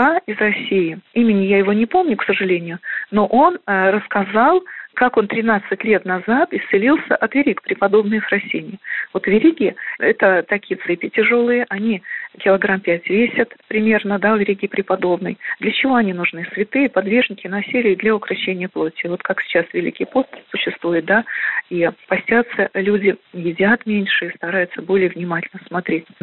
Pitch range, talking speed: 185-225 Hz, 150 wpm